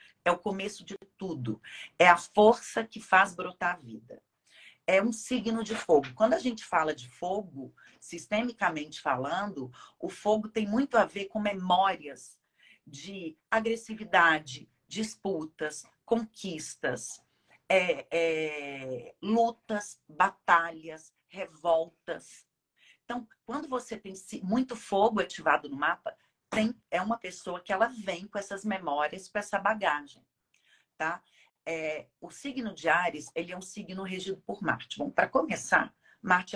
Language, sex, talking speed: Portuguese, female, 135 wpm